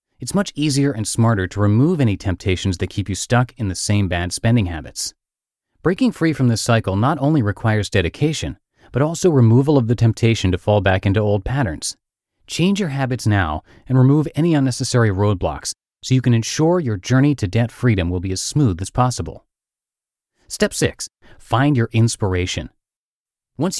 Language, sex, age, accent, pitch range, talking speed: English, male, 30-49, American, 105-145 Hz, 175 wpm